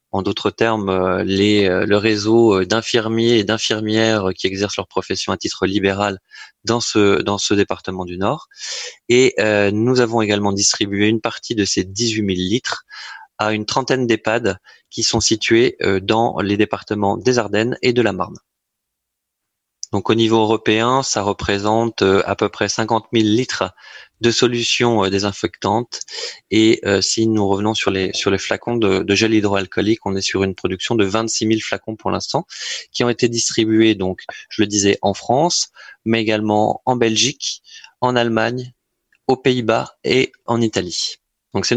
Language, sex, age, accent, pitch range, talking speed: French, male, 20-39, French, 100-115 Hz, 165 wpm